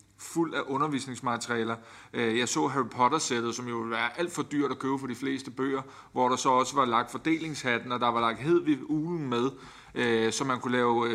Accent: native